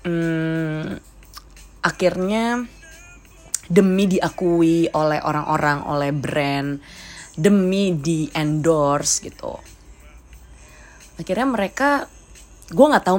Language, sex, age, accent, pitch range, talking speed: Indonesian, female, 20-39, native, 145-170 Hz, 75 wpm